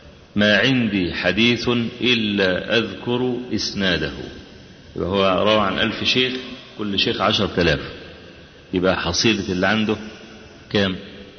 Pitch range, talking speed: 105-130 Hz, 105 wpm